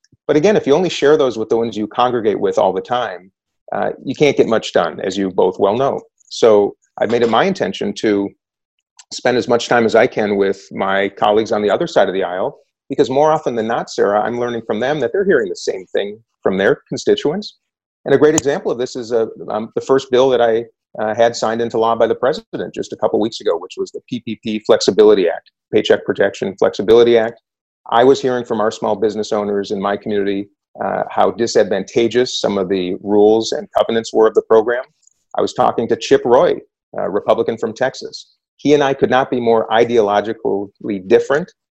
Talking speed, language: 215 wpm, English